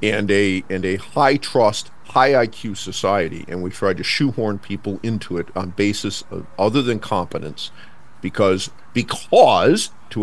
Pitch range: 95-120 Hz